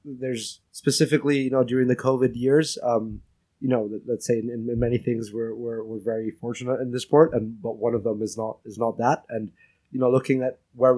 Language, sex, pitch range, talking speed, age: English, male, 110-130 Hz, 230 wpm, 20-39